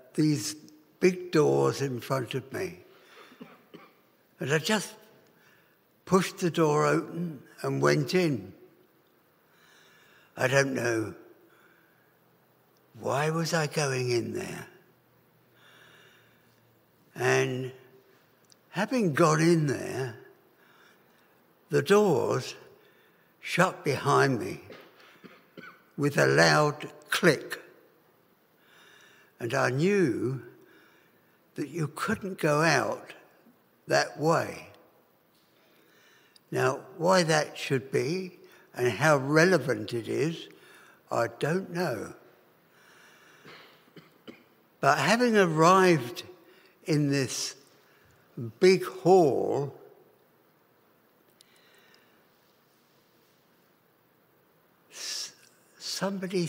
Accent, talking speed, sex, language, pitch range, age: British, 75 wpm, male, English, 130-185 Hz, 60-79